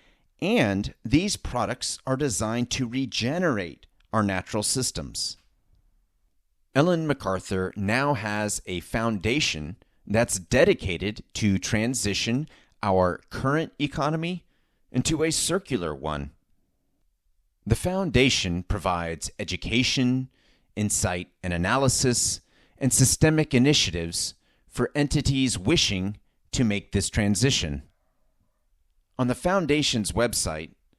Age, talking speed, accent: 30-49, 95 wpm, American